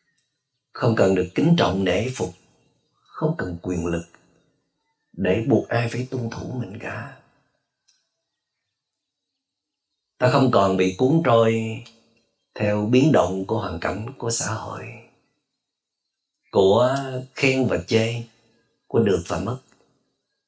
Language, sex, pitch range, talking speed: Vietnamese, male, 95-130 Hz, 125 wpm